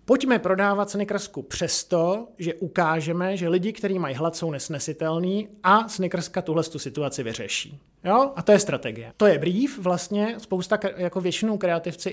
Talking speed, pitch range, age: 160 wpm, 165-195 Hz, 20-39